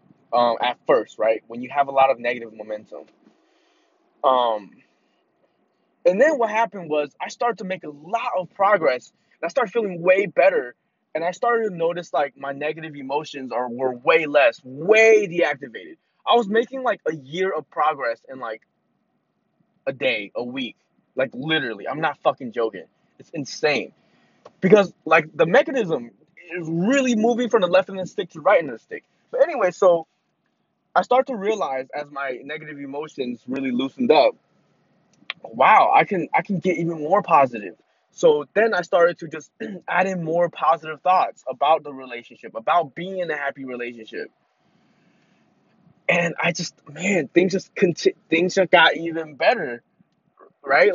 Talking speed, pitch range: 170 wpm, 145-210 Hz